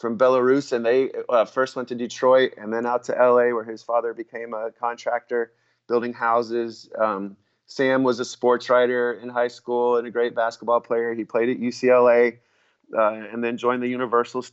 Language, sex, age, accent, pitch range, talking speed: English, male, 30-49, American, 115-130 Hz, 190 wpm